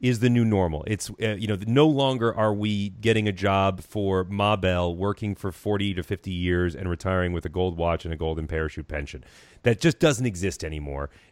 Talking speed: 210 wpm